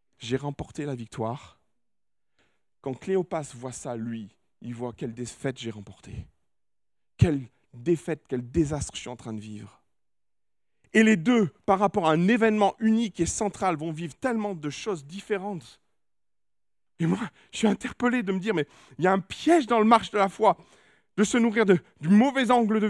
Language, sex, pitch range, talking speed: French, male, 135-205 Hz, 190 wpm